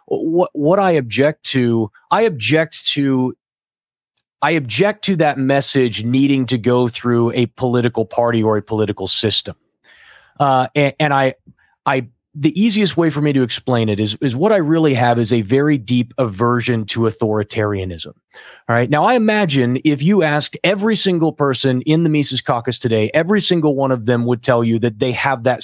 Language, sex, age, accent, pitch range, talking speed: English, male, 30-49, American, 125-160 Hz, 185 wpm